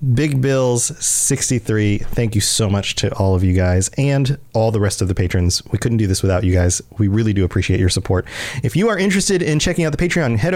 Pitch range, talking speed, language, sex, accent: 105-150 Hz, 240 wpm, English, male, American